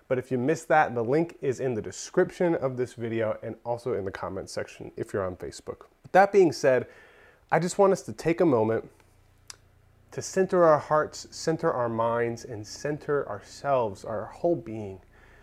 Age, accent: 30-49, American